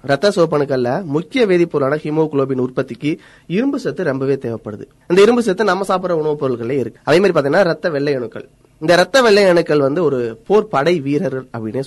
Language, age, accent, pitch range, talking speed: Tamil, 20-39, native, 130-175 Hz, 145 wpm